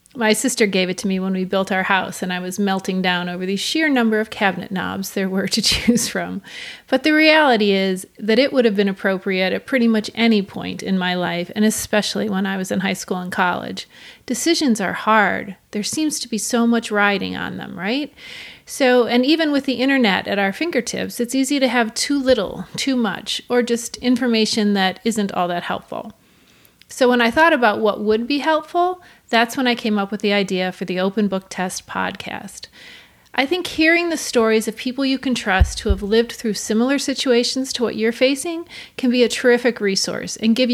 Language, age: English, 30-49